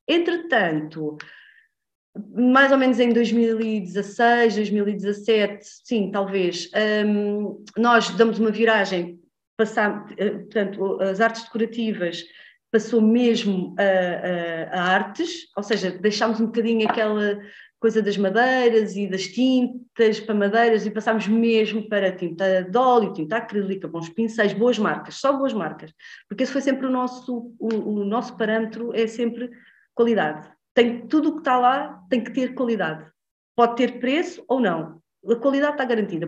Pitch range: 205-265 Hz